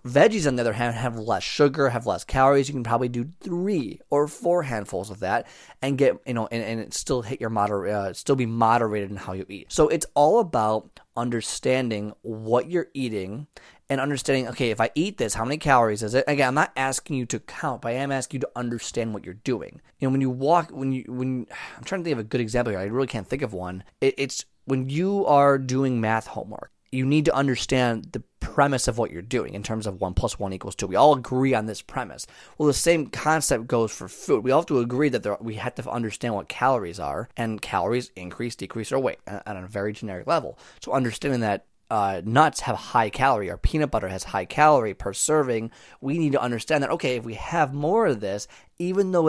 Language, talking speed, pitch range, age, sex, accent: English, 235 wpm, 110-140 Hz, 20-39, male, American